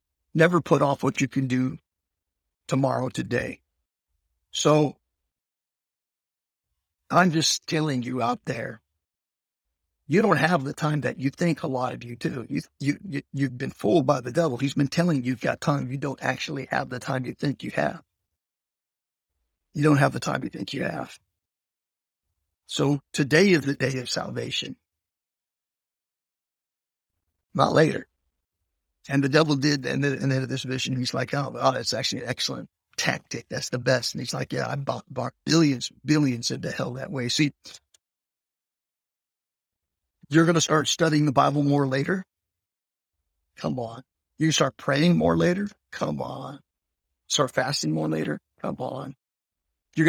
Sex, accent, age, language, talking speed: male, American, 50-69, English, 155 wpm